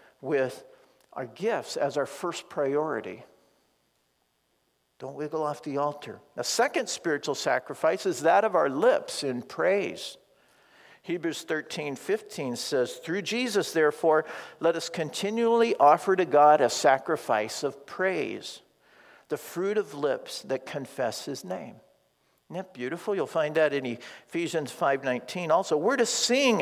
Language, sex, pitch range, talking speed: English, male, 155-220 Hz, 135 wpm